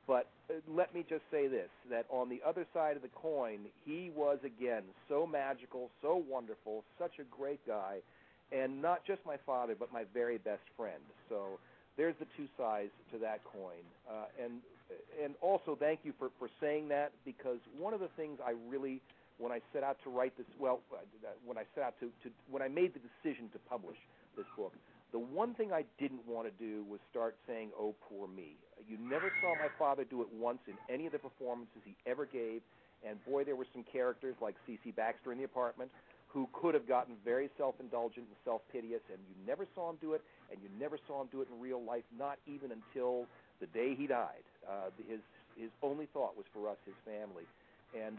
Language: English